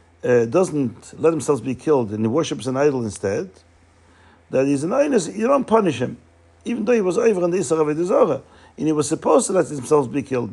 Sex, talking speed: male, 215 wpm